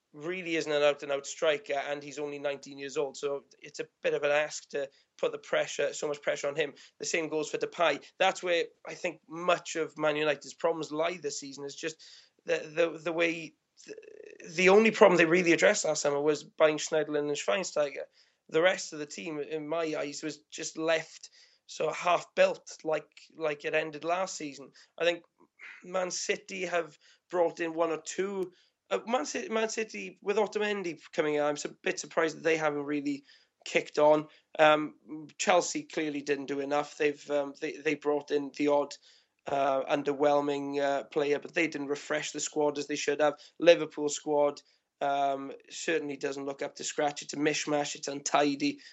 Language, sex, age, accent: English, male, 20-39, British